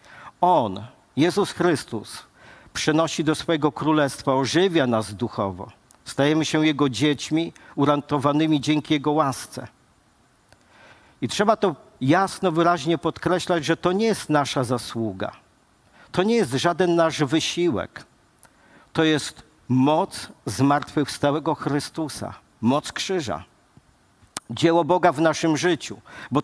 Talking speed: 110 wpm